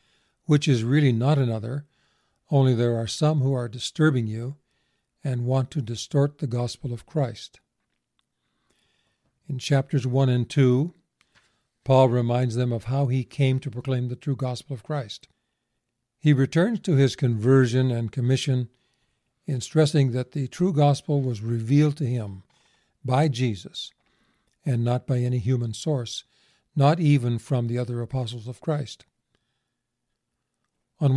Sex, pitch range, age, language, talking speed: male, 120-140 Hz, 50-69, English, 140 wpm